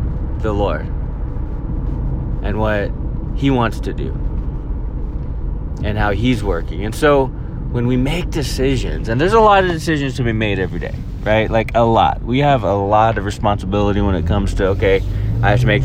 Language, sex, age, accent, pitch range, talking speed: English, male, 20-39, American, 95-125 Hz, 180 wpm